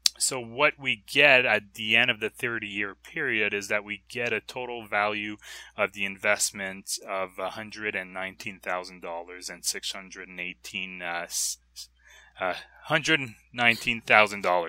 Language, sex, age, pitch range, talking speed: English, male, 20-39, 90-110 Hz, 145 wpm